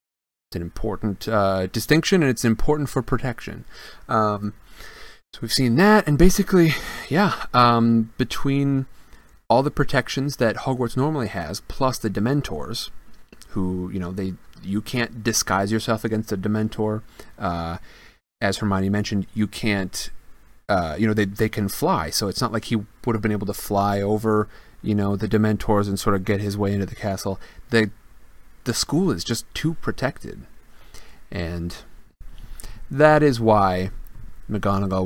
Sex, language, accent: male, English, American